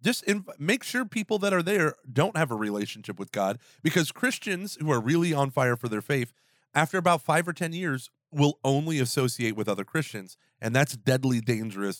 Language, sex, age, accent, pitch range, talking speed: English, male, 30-49, American, 120-160 Hz, 195 wpm